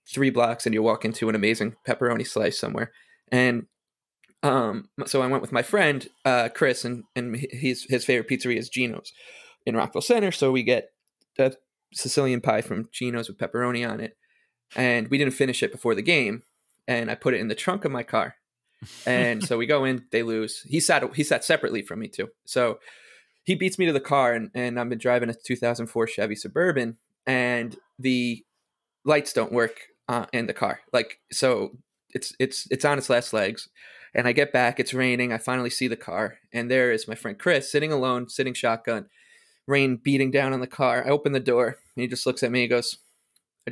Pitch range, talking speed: 120-145 Hz, 210 wpm